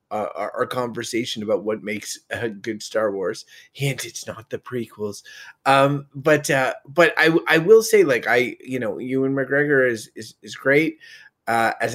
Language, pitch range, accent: English, 125-165 Hz, American